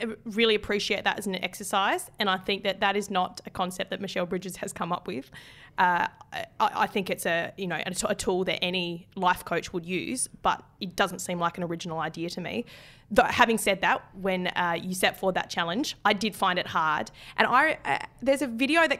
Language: English